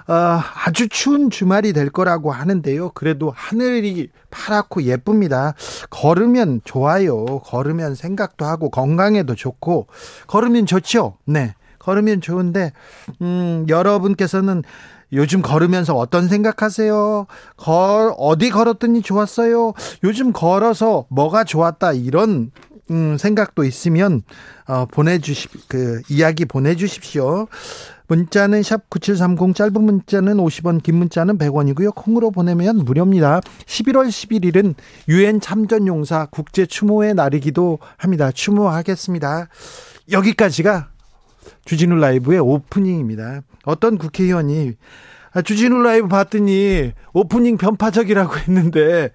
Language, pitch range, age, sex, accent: Korean, 150-210 Hz, 40-59, male, native